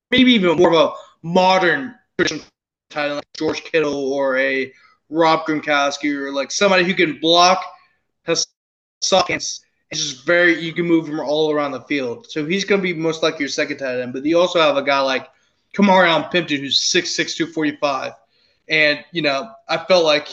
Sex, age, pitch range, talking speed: male, 20-39, 145-175 Hz, 190 wpm